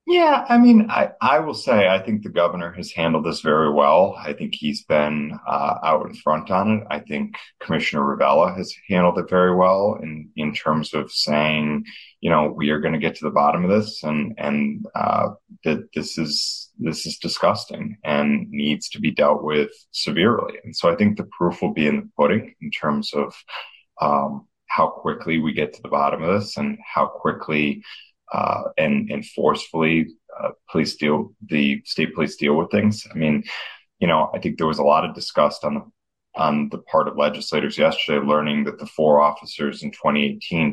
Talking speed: 200 wpm